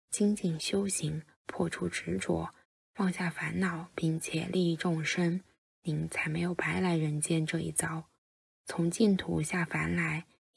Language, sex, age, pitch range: Chinese, female, 10-29, 155-185 Hz